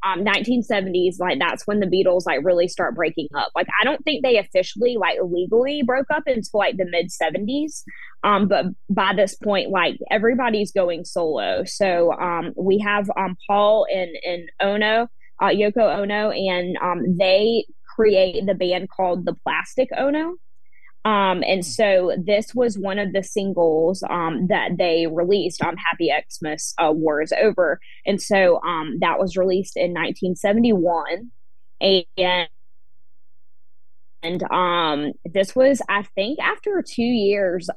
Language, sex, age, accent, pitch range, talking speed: English, female, 20-39, American, 175-210 Hz, 155 wpm